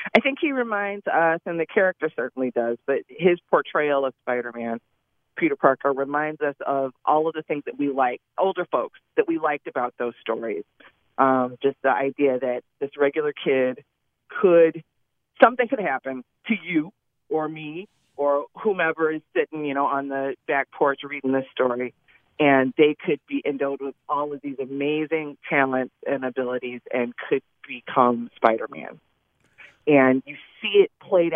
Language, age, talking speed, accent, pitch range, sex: English, 30-49, 170 wpm, American, 130-165 Hz, female